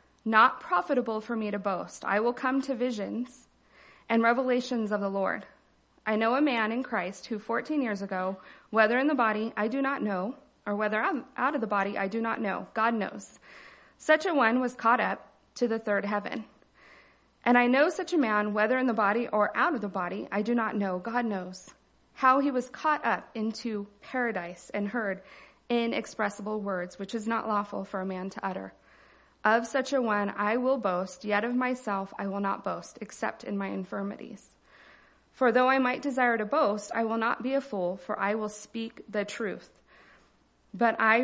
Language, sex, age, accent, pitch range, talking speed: English, female, 40-59, American, 200-240 Hz, 200 wpm